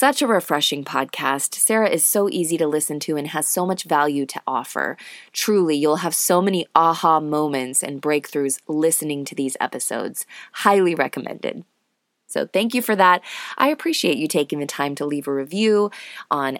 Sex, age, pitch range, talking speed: female, 20-39, 150-220 Hz, 175 wpm